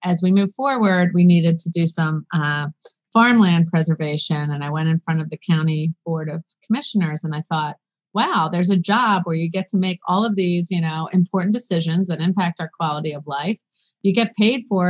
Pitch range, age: 170-205 Hz, 30-49